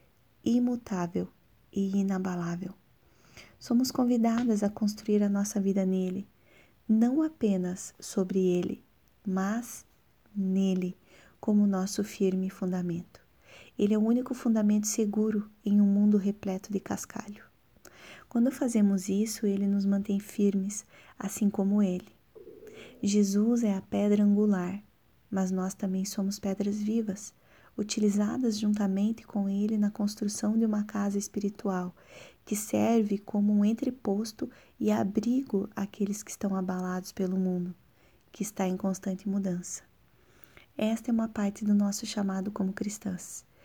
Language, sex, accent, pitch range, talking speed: Portuguese, female, Brazilian, 195-215 Hz, 125 wpm